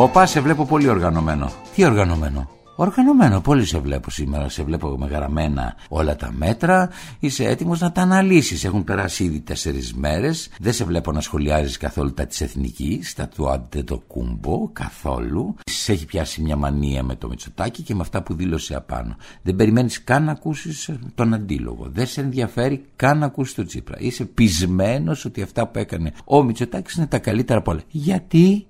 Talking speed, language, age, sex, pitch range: 170 wpm, Greek, 60-79, male, 80-115 Hz